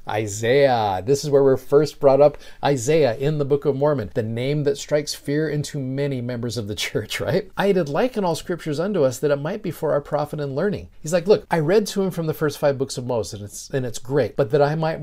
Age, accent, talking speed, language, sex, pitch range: 40-59, American, 260 wpm, English, male, 120-155 Hz